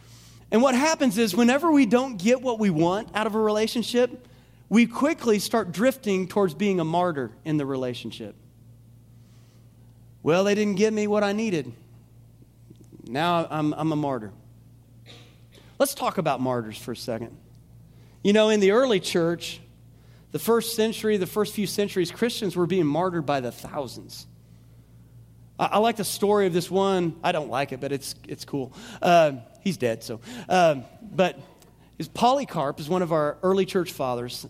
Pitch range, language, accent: 130-205 Hz, English, American